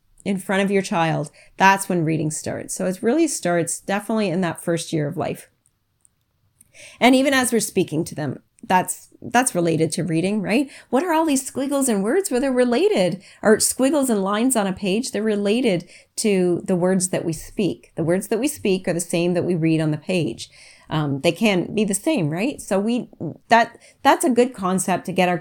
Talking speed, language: 215 wpm, English